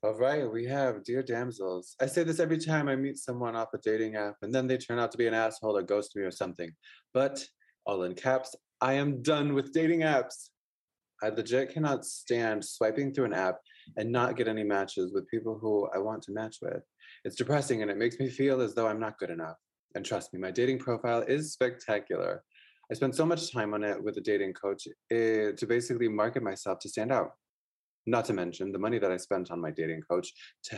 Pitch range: 105-135 Hz